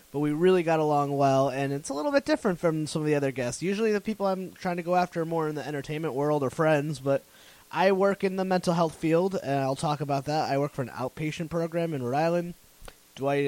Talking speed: 255 wpm